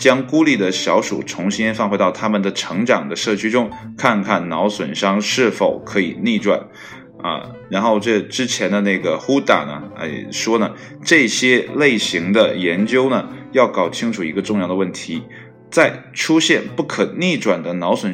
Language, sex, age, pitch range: Chinese, male, 20-39, 95-110 Hz